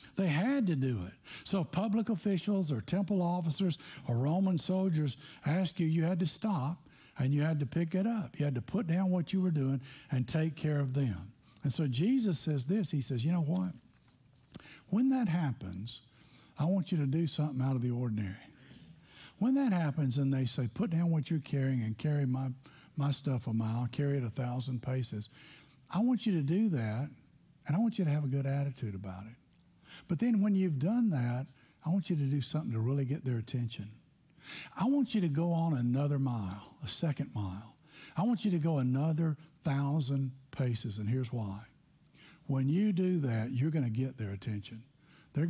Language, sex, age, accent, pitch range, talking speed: English, male, 60-79, American, 130-170 Hz, 205 wpm